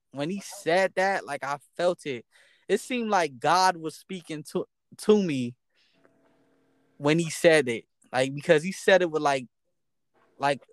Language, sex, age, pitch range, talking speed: English, male, 10-29, 130-160 Hz, 160 wpm